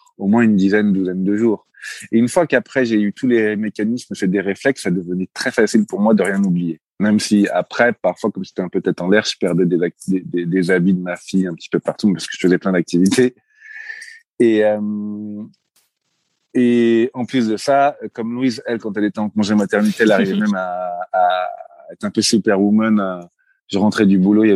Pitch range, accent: 95-120 Hz, French